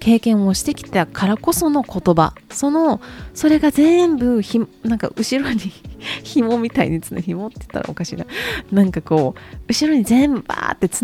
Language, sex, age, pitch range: Japanese, female, 20-39, 165-265 Hz